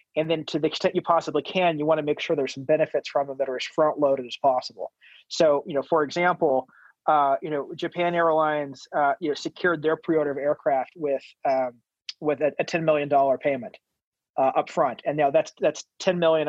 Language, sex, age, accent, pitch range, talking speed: English, male, 30-49, American, 140-165 Hz, 215 wpm